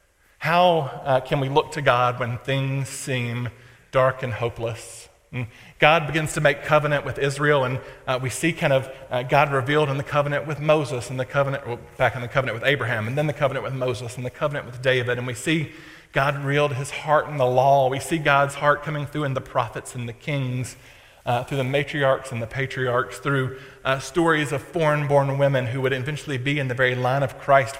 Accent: American